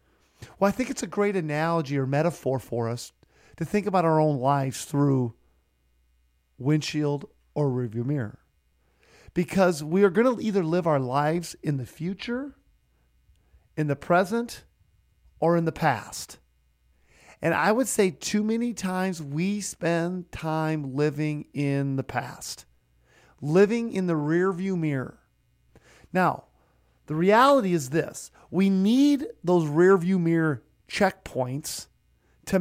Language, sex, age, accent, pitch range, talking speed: English, male, 40-59, American, 125-180 Hz, 135 wpm